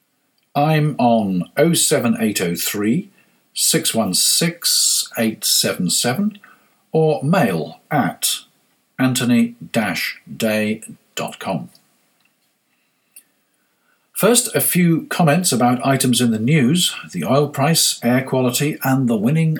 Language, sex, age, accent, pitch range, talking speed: English, male, 50-69, British, 115-155 Hz, 75 wpm